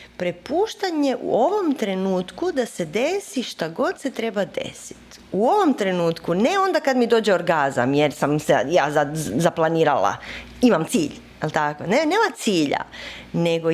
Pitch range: 160-225 Hz